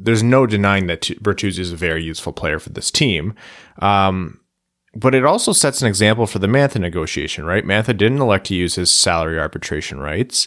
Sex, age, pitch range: male, 30-49, 90-110 Hz